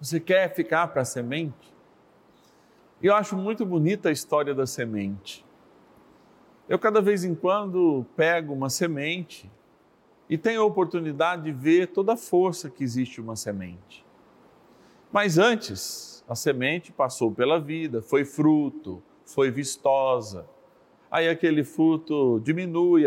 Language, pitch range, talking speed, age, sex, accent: Portuguese, 125-170 Hz, 130 wpm, 40-59, male, Brazilian